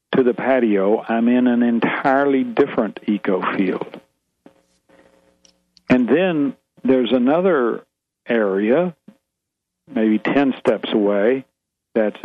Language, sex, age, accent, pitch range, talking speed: English, male, 60-79, American, 105-125 Hz, 100 wpm